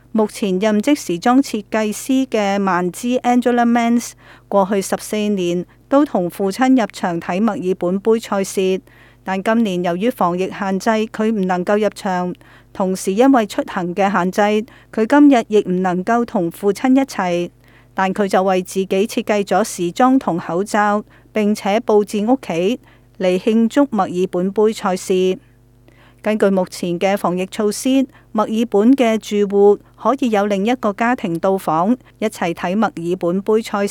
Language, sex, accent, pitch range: Chinese, female, native, 185-225 Hz